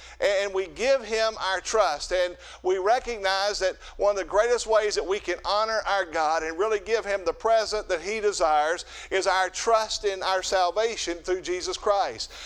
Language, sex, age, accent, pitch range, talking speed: English, male, 50-69, American, 190-240 Hz, 190 wpm